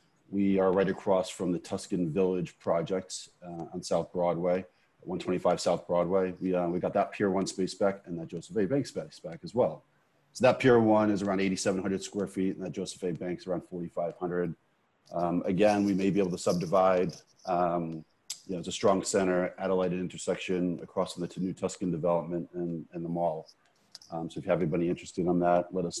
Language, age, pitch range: English, 30-49, 85-95 Hz